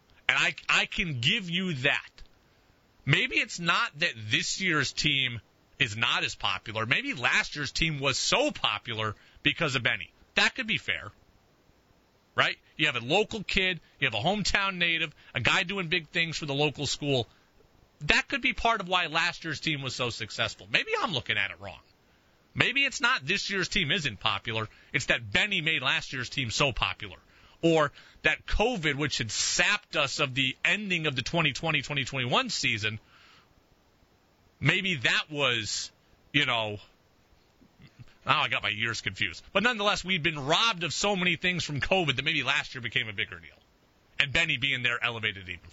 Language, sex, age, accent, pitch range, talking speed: English, male, 40-59, American, 115-165 Hz, 180 wpm